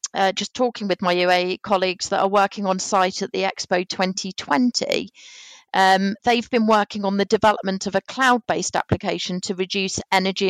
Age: 40-59